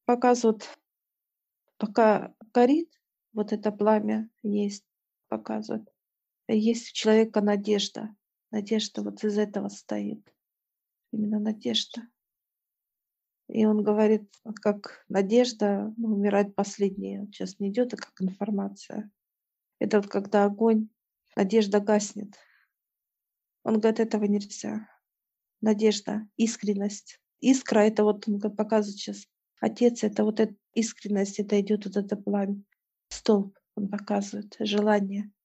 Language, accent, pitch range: Russian, native, 205-225 Hz